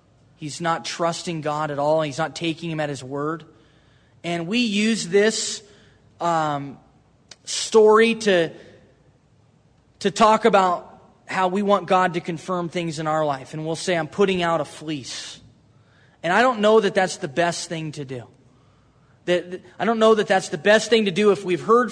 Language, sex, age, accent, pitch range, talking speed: English, male, 20-39, American, 155-210 Hz, 185 wpm